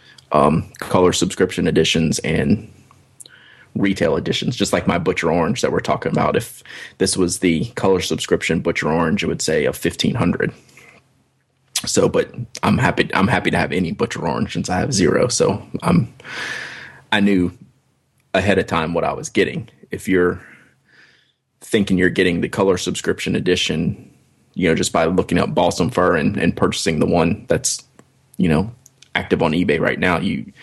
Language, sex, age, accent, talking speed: English, male, 20-39, American, 170 wpm